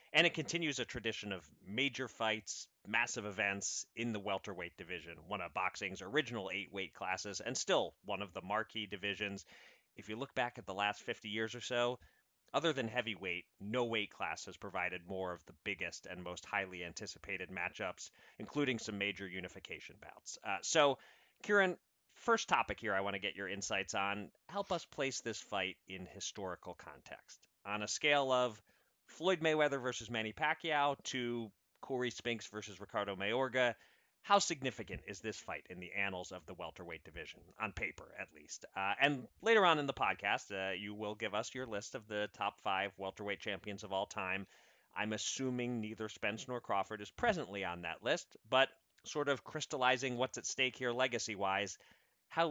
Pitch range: 95-130 Hz